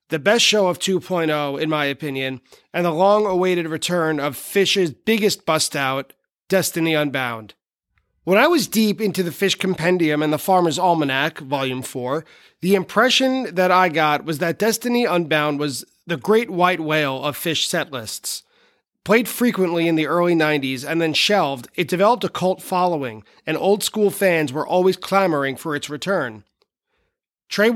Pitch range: 150-190 Hz